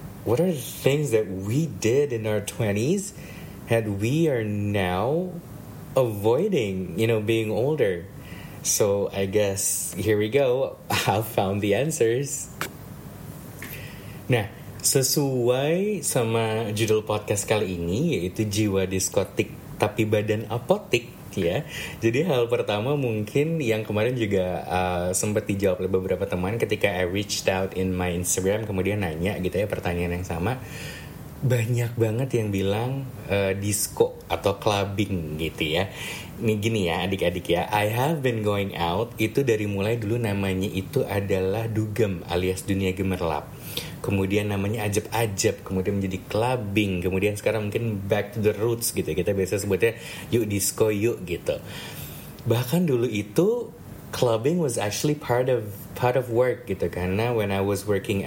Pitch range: 95-120 Hz